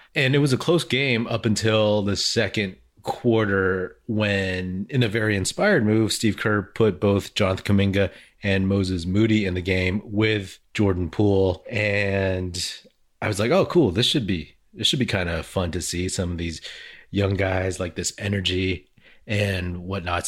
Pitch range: 95-110 Hz